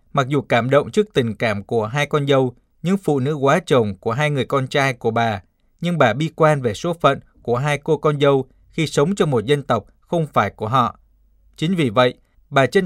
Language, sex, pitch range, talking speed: Vietnamese, male, 115-155 Hz, 235 wpm